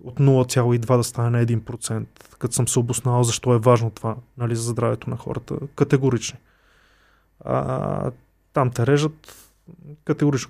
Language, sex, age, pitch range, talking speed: Bulgarian, male, 20-39, 125-145 Hz, 145 wpm